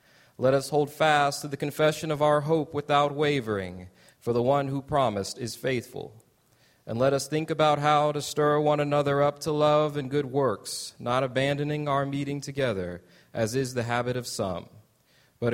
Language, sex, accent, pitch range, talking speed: English, male, American, 125-150 Hz, 180 wpm